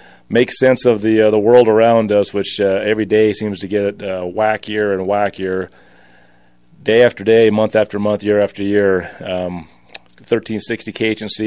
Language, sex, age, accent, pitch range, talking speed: English, male, 30-49, American, 95-110 Hz, 160 wpm